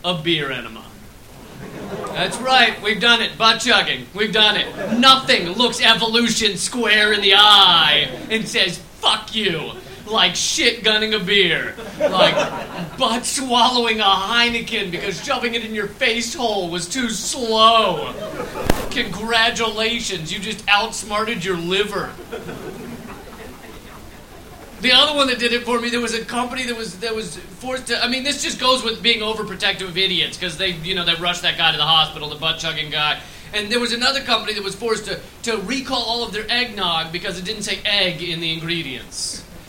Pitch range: 185-235 Hz